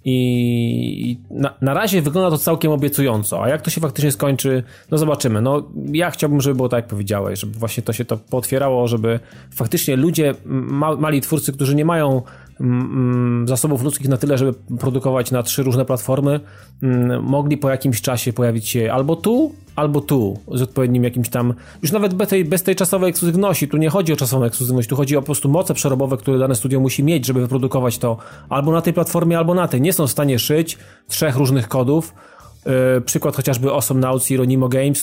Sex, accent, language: male, native, Polish